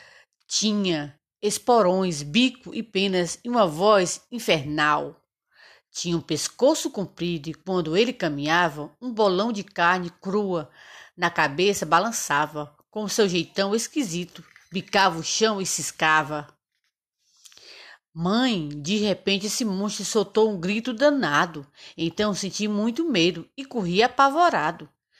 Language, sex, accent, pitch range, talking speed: Portuguese, female, Brazilian, 170-230 Hz, 120 wpm